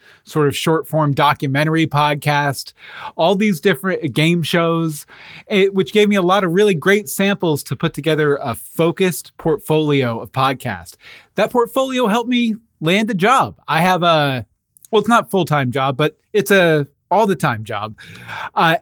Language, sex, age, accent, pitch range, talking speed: English, male, 30-49, American, 140-185 Hz, 165 wpm